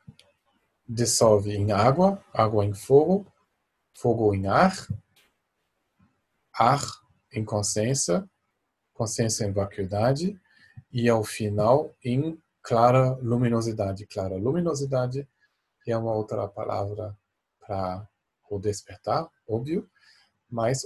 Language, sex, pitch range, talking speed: Portuguese, male, 105-130 Hz, 90 wpm